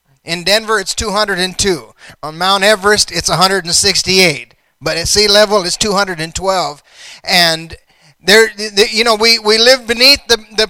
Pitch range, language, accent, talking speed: 205-265 Hz, English, American, 150 wpm